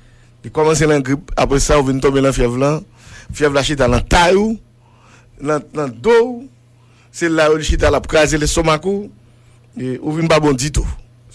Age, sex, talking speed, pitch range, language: 60-79, male, 180 wpm, 120-145 Hz, English